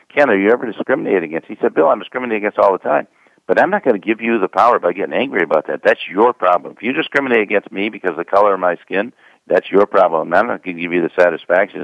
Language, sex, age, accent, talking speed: English, male, 60-79, American, 280 wpm